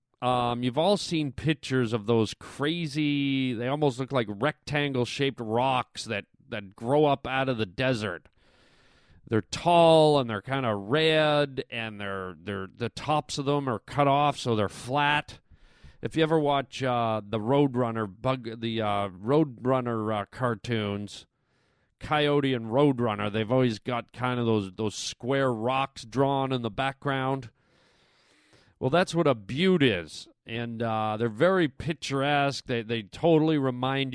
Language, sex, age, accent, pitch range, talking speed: English, male, 40-59, American, 115-140 Hz, 150 wpm